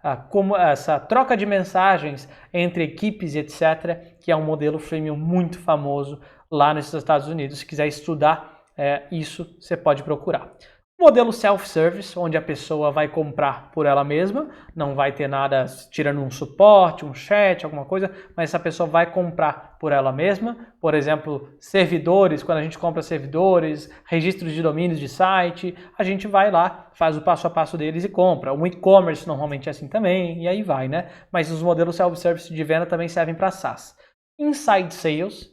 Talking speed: 175 wpm